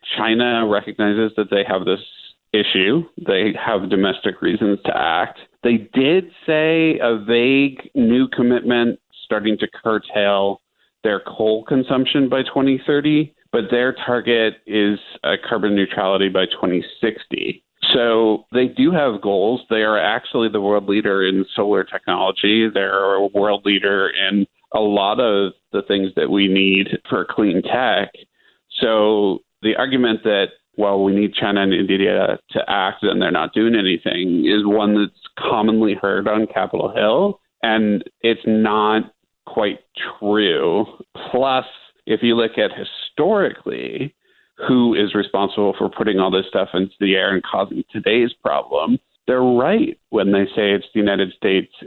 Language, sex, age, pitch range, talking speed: English, male, 40-59, 100-120 Hz, 145 wpm